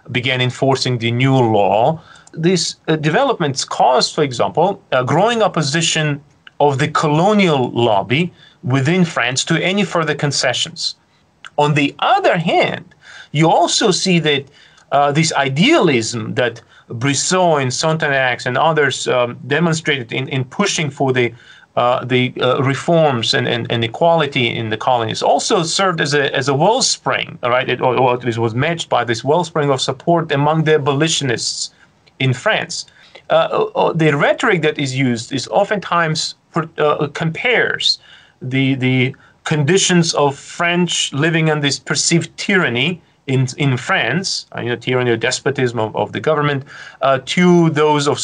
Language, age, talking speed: English, 40-59, 150 wpm